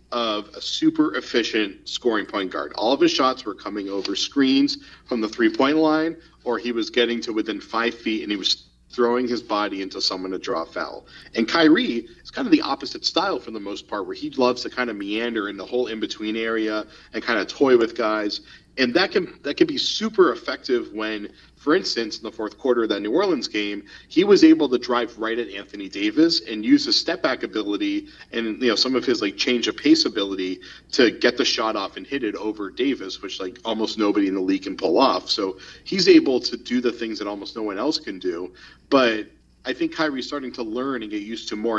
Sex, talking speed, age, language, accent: male, 230 wpm, 40-59, English, American